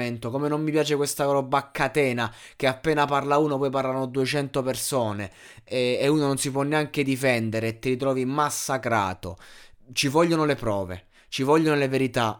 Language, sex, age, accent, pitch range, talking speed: Italian, male, 20-39, native, 115-145 Hz, 170 wpm